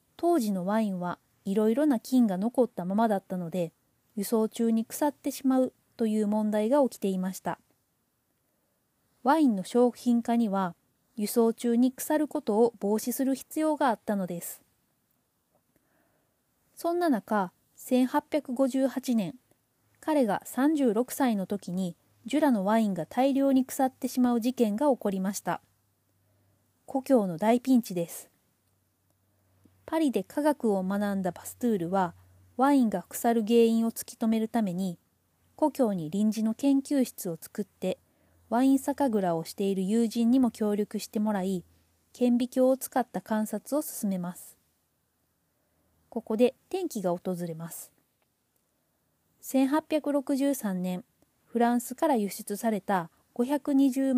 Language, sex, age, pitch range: Japanese, female, 20-39, 195-265 Hz